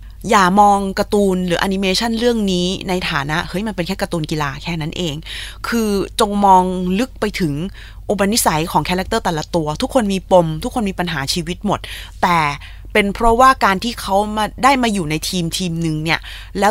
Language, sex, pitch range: Thai, female, 175-225 Hz